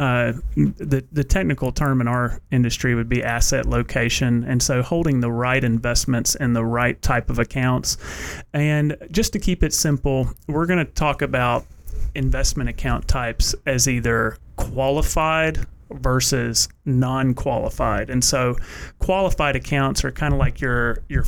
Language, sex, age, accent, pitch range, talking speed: English, male, 30-49, American, 120-140 Hz, 150 wpm